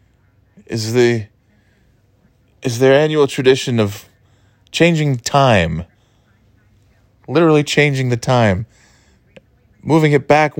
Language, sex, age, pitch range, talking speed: English, male, 30-49, 100-130 Hz, 90 wpm